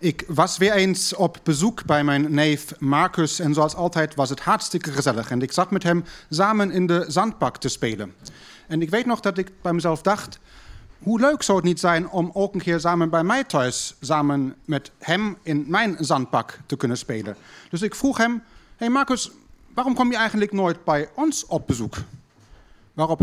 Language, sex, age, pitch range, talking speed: Dutch, male, 30-49, 145-185 Hz, 195 wpm